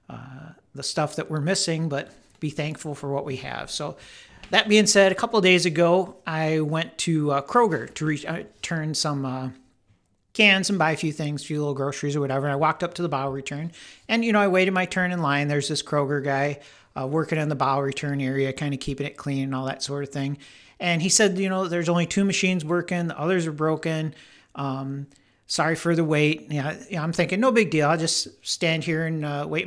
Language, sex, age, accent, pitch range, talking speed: English, male, 50-69, American, 140-175 Hz, 230 wpm